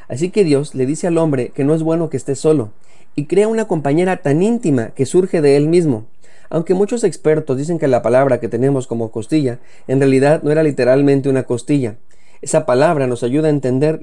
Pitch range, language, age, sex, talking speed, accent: 125-155 Hz, Spanish, 30-49, male, 210 wpm, Mexican